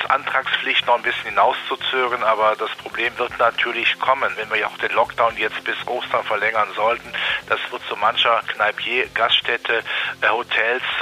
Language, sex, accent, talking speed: German, male, German, 160 wpm